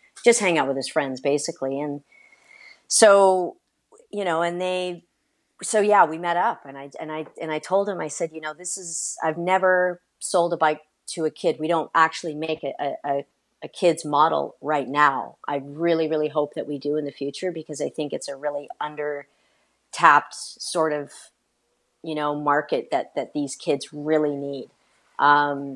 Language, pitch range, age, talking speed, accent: English, 145-180 Hz, 40-59, 190 wpm, American